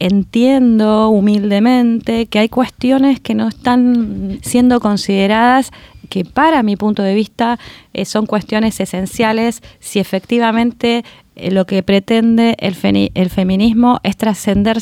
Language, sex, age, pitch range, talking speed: Spanish, female, 20-39, 195-245 Hz, 125 wpm